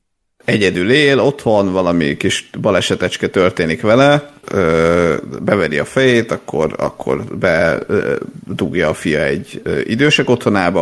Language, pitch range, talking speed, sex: Hungarian, 90-115 Hz, 115 wpm, male